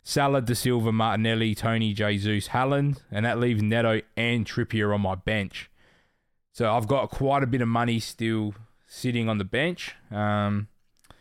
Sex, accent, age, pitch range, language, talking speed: male, Australian, 20-39, 100-120 Hz, English, 160 wpm